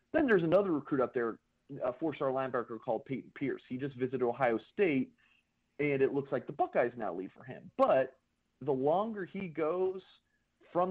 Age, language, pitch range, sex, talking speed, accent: 40-59, English, 120-155 Hz, male, 180 wpm, American